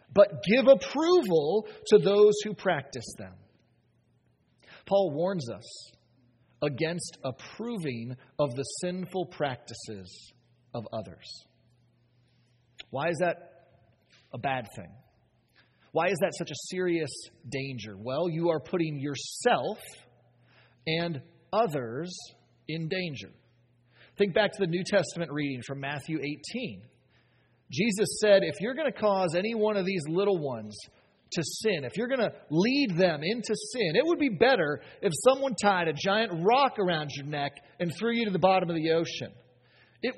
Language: English